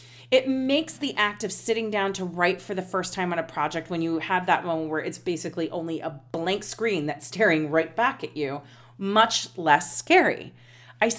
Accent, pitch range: American, 165-215 Hz